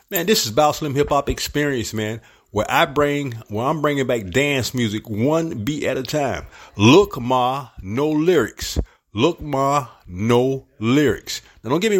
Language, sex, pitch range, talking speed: English, male, 120-150 Hz, 175 wpm